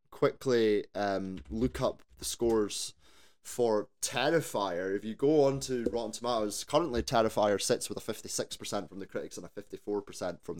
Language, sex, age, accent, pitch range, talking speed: English, male, 20-39, British, 105-145 Hz, 170 wpm